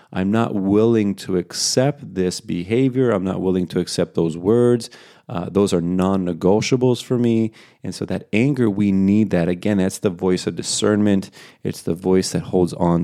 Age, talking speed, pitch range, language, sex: 30-49, 180 wpm, 85-110 Hz, English, male